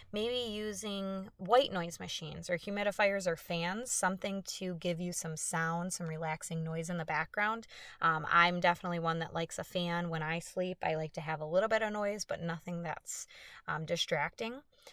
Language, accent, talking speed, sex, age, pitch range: English, American, 185 wpm, female, 20-39, 170-220 Hz